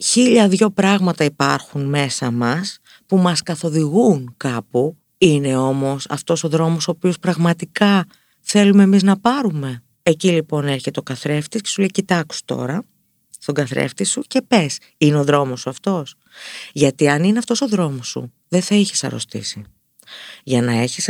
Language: Greek